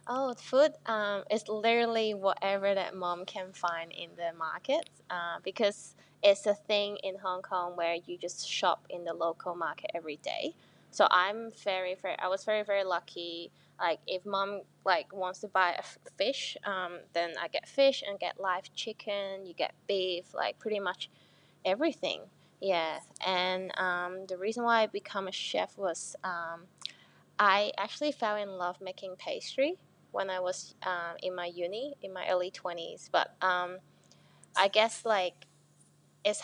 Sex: female